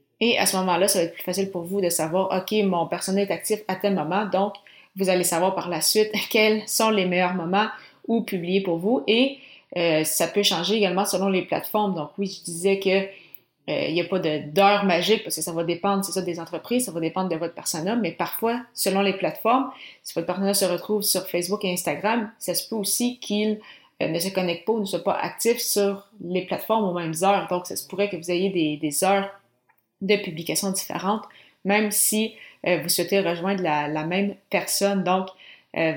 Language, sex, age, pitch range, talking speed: French, female, 30-49, 175-205 Hz, 220 wpm